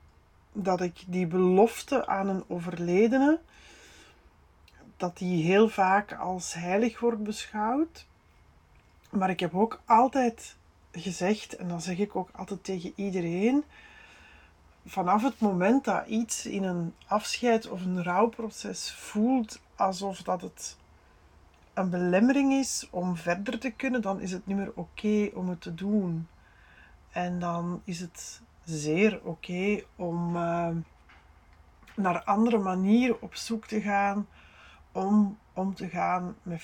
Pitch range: 170-215 Hz